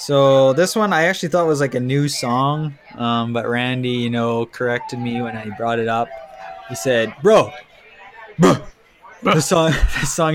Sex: male